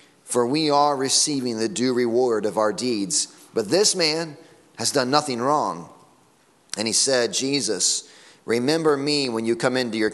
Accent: American